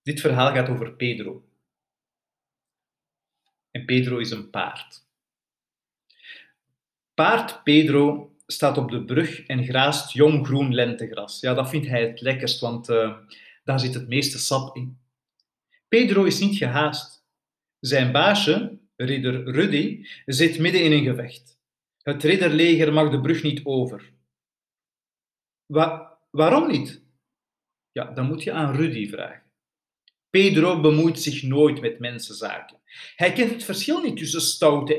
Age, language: 50-69, Dutch